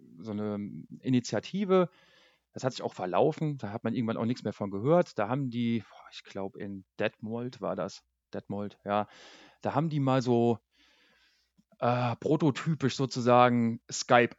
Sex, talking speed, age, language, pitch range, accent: male, 155 wpm, 40-59, German, 105-140 Hz, German